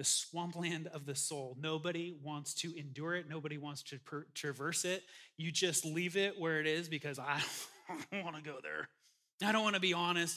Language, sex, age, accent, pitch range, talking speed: English, male, 30-49, American, 150-200 Hz, 190 wpm